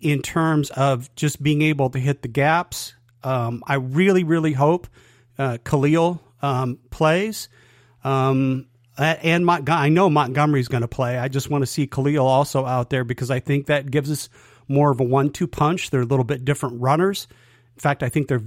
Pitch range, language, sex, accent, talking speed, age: 130-170 Hz, English, male, American, 190 wpm, 40-59